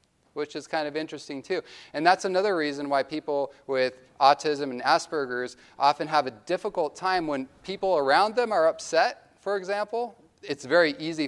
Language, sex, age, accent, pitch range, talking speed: English, male, 30-49, American, 140-185 Hz, 170 wpm